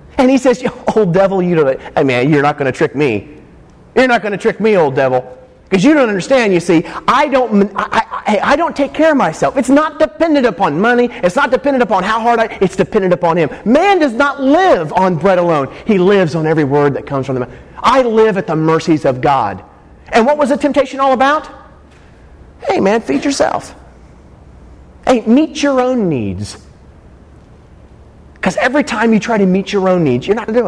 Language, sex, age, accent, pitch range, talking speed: English, male, 30-49, American, 170-245 Hz, 215 wpm